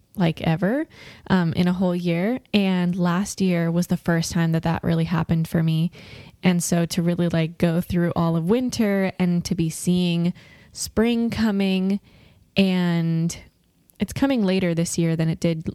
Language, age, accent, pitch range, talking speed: English, 10-29, American, 170-205 Hz, 170 wpm